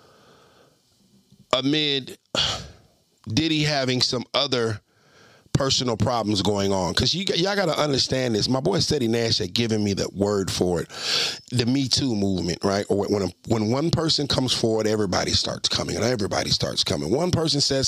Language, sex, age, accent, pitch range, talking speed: English, male, 40-59, American, 95-130 Hz, 165 wpm